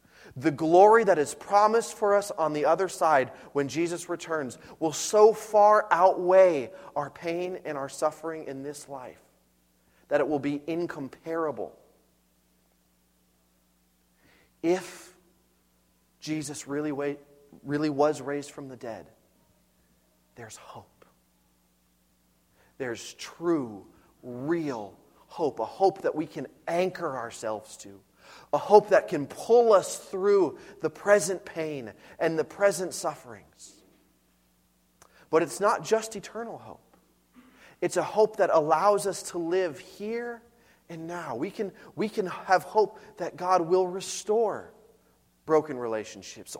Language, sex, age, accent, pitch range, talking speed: English, male, 30-49, American, 130-195 Hz, 125 wpm